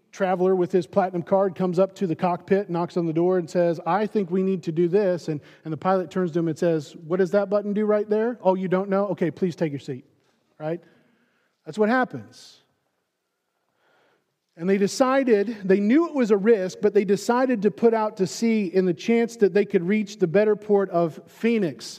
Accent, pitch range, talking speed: American, 180-230 Hz, 220 wpm